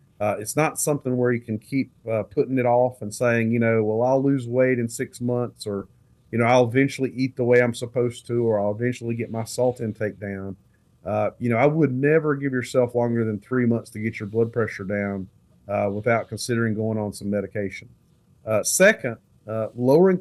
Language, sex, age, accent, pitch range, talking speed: English, male, 40-59, American, 110-135 Hz, 210 wpm